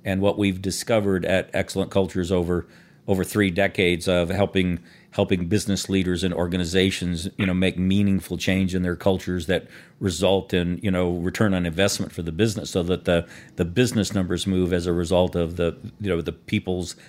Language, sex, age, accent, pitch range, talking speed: English, male, 50-69, American, 90-100 Hz, 185 wpm